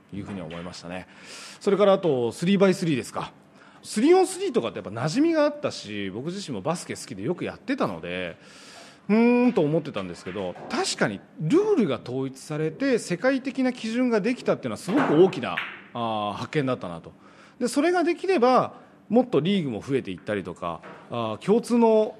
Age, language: 30-49, Japanese